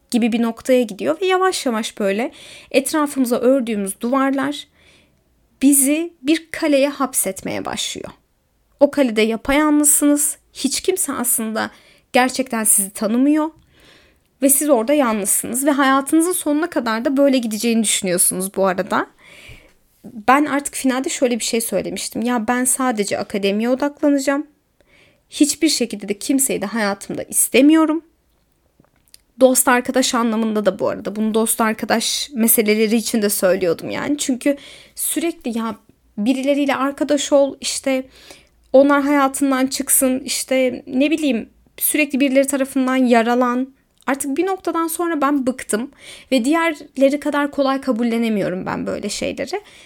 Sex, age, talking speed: female, 30-49, 125 wpm